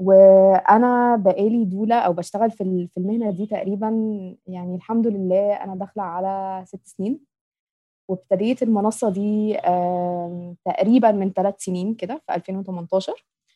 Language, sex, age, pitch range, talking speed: Arabic, female, 20-39, 185-225 Hz, 120 wpm